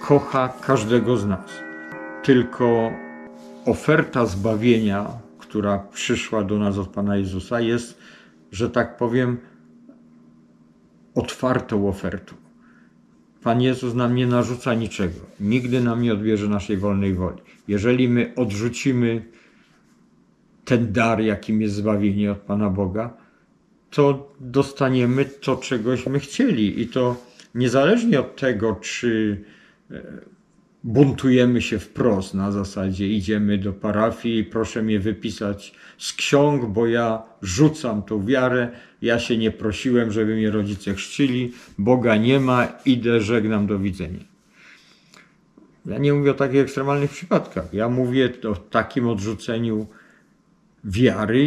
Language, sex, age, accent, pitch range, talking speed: Polish, male, 50-69, native, 105-125 Hz, 120 wpm